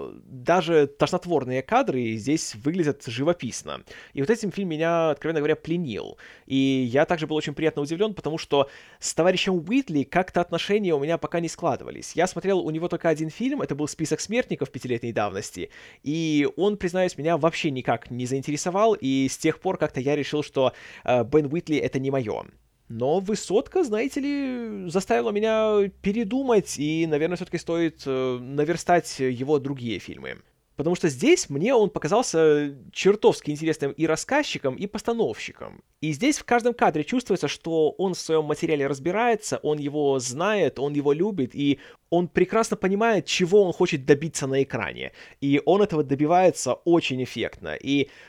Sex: male